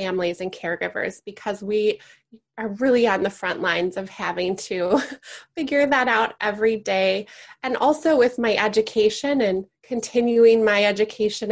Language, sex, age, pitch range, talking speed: English, female, 20-39, 205-245 Hz, 145 wpm